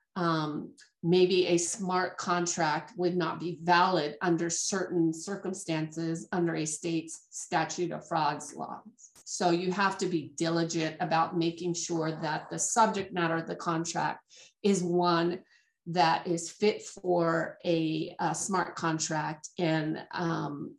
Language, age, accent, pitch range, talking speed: English, 40-59, American, 165-185 Hz, 135 wpm